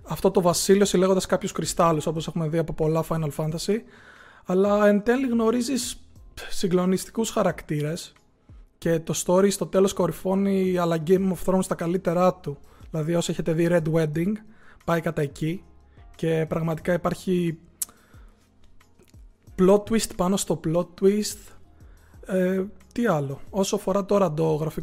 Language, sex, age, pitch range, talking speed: Greek, male, 20-39, 160-190 Hz, 135 wpm